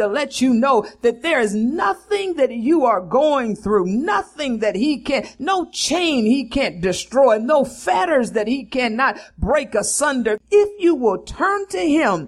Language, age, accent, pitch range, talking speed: English, 50-69, American, 220-310 Hz, 170 wpm